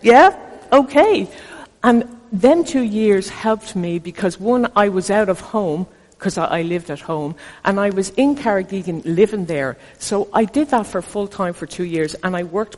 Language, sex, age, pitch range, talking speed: English, female, 60-79, 160-210 Hz, 190 wpm